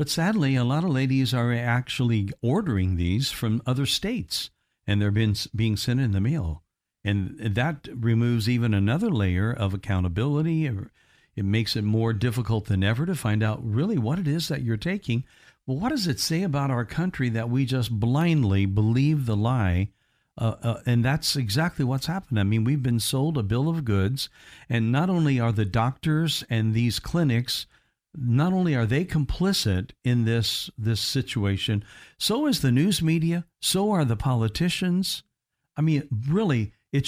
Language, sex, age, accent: English, male, 60-79, American